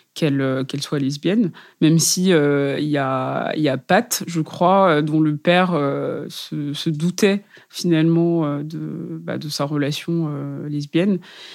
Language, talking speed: French, 155 wpm